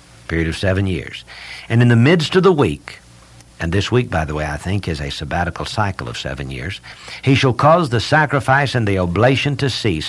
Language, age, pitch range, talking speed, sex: English, 60-79, 90-125 Hz, 215 wpm, male